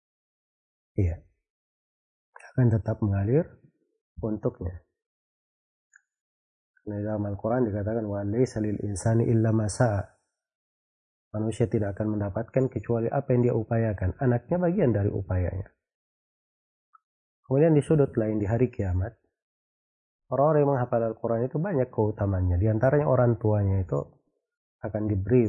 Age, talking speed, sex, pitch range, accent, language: 30-49, 105 wpm, male, 95-120 Hz, native, Indonesian